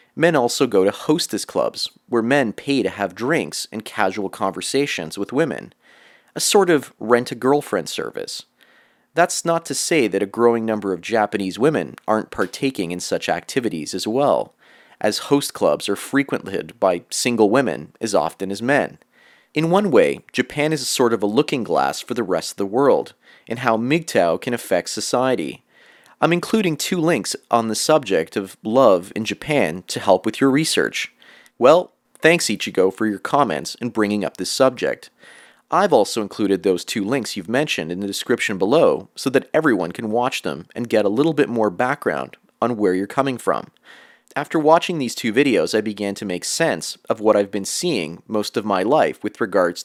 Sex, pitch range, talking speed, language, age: male, 105-155 Hz, 185 wpm, English, 30-49